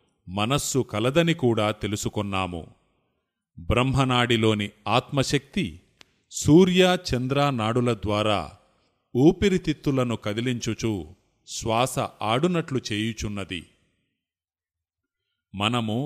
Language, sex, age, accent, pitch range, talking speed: Telugu, male, 30-49, native, 105-135 Hz, 50 wpm